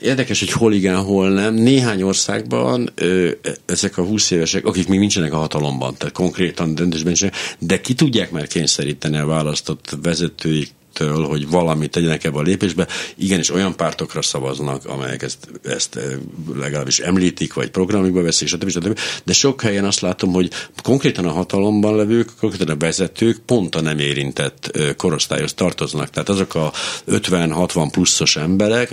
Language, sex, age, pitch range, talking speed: Hungarian, male, 60-79, 85-105 Hz, 155 wpm